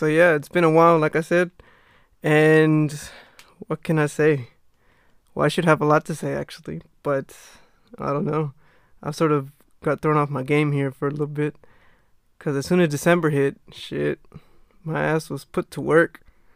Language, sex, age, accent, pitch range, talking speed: English, male, 20-39, American, 140-160 Hz, 190 wpm